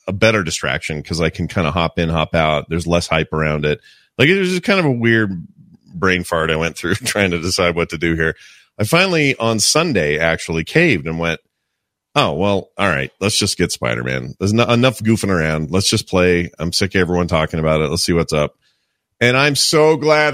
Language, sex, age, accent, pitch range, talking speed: English, male, 30-49, American, 85-110 Hz, 225 wpm